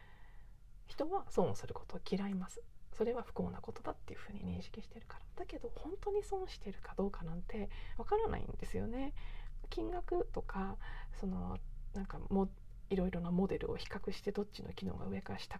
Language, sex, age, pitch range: Japanese, female, 40-59, 170-270 Hz